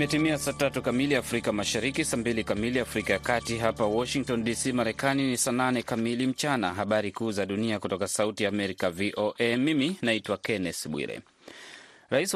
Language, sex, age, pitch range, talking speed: Swahili, male, 30-49, 105-125 Hz, 160 wpm